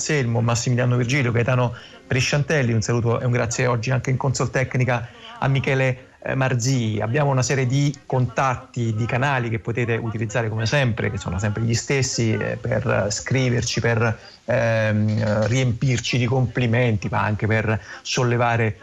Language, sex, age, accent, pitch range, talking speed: Italian, male, 30-49, native, 110-130 Hz, 145 wpm